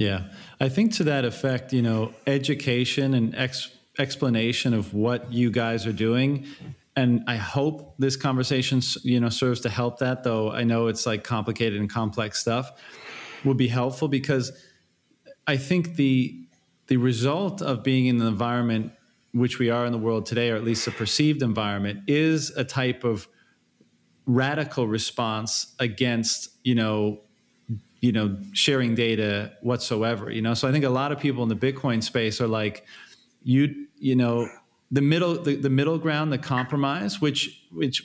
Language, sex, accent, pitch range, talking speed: English, male, American, 115-140 Hz, 165 wpm